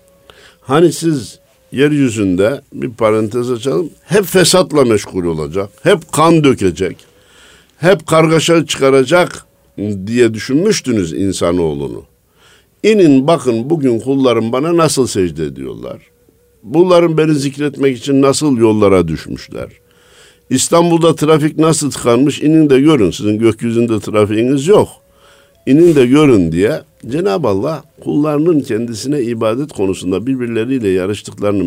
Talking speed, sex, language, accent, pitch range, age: 110 wpm, male, Turkish, native, 105-150 Hz, 60-79